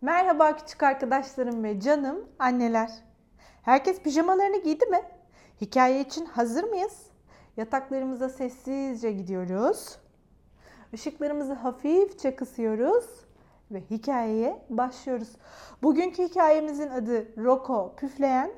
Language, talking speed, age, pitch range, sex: Turkish, 90 wpm, 40-59, 230-305 Hz, female